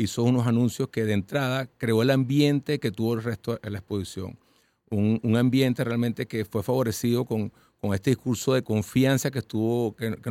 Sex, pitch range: male, 110-130 Hz